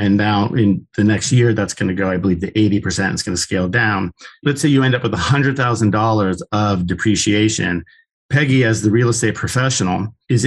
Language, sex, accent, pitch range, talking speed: English, male, American, 100-120 Hz, 200 wpm